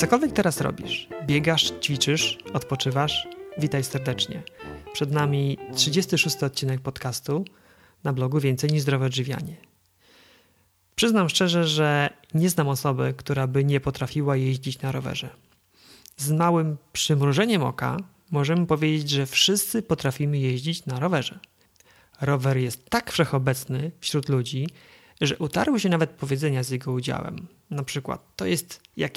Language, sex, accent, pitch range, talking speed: Polish, male, native, 135-165 Hz, 130 wpm